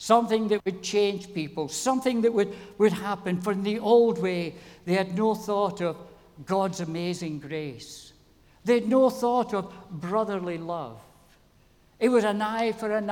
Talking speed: 165 wpm